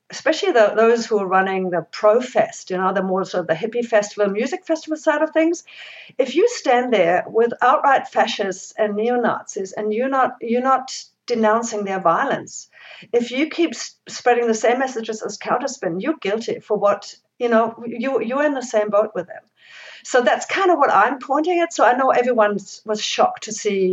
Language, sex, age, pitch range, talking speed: English, female, 50-69, 205-255 Hz, 200 wpm